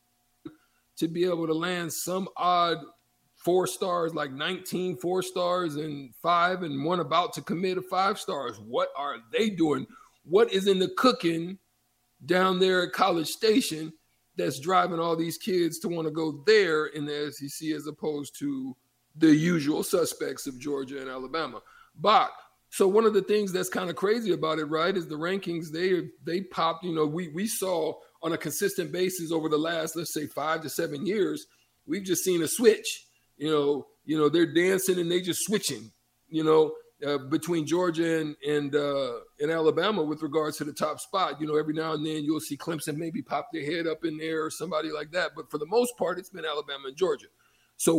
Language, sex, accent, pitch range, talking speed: English, male, American, 155-185 Hz, 200 wpm